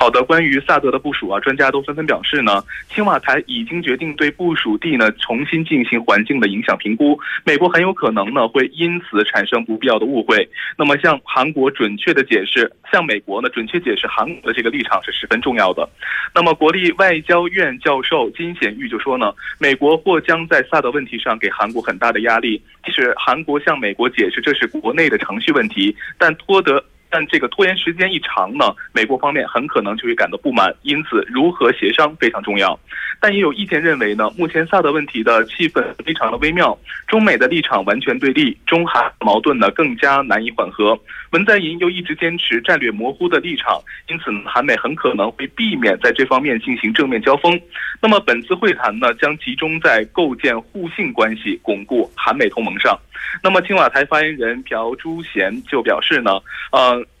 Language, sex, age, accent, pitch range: Korean, male, 20-39, Chinese, 140-190 Hz